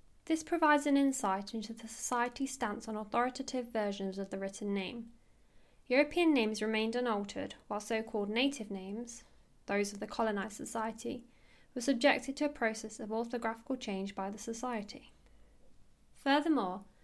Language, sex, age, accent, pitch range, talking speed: English, female, 10-29, British, 205-250 Hz, 140 wpm